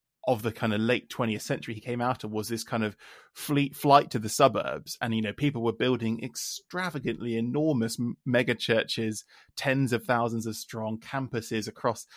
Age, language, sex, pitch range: 20-39, English, male, 115-130 Hz